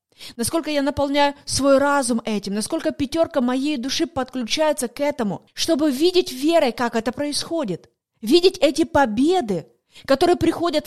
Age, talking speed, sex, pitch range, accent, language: 30-49, 130 wpm, female, 245-305 Hz, native, Russian